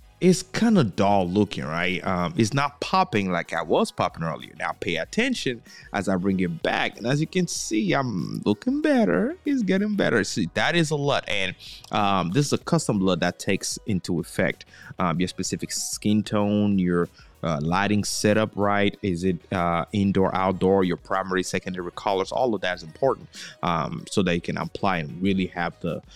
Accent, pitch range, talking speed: American, 85-105 Hz, 195 wpm